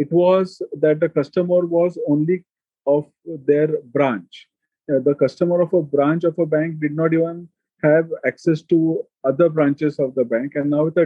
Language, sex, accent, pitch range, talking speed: English, male, Indian, 150-190 Hz, 180 wpm